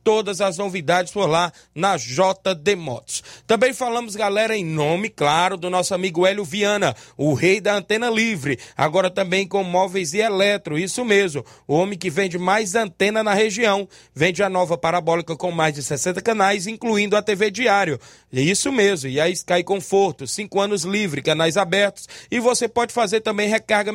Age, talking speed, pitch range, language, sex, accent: 20-39, 175 wpm, 170-215 Hz, Portuguese, male, Brazilian